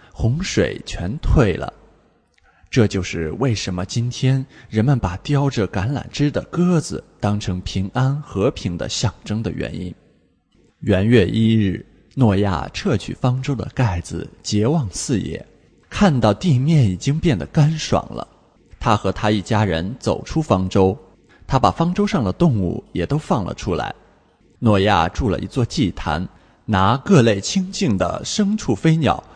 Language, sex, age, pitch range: English, male, 20-39, 95-140 Hz